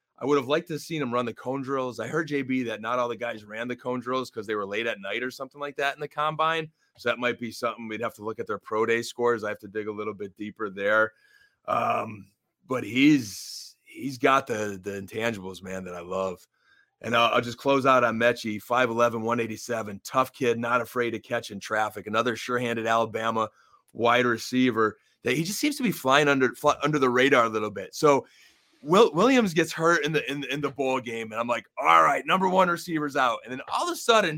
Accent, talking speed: American, 240 wpm